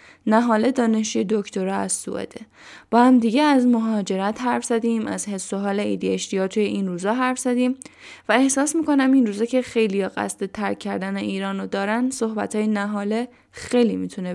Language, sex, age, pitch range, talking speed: Persian, female, 10-29, 195-240 Hz, 150 wpm